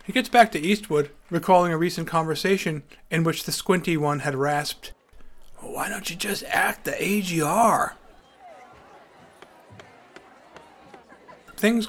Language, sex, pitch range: English, male, 140-200 Hz